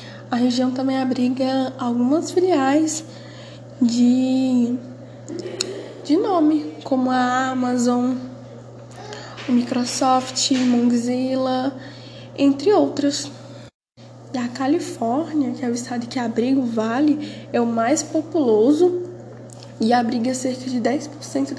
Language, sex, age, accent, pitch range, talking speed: Portuguese, female, 10-29, Brazilian, 255-295 Hz, 105 wpm